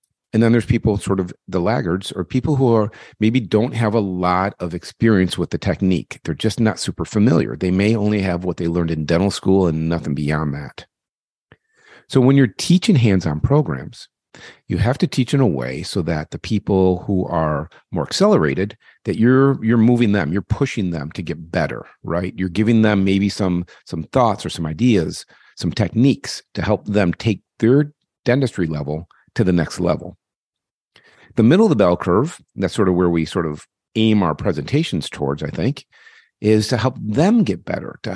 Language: English